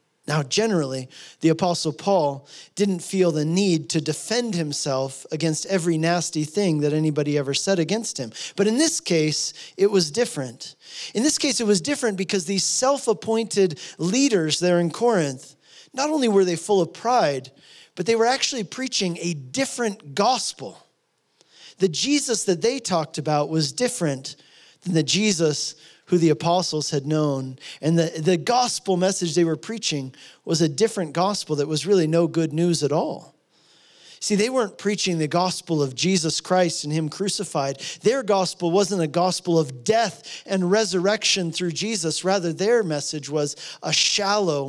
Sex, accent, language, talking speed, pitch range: male, American, English, 165 wpm, 155-200 Hz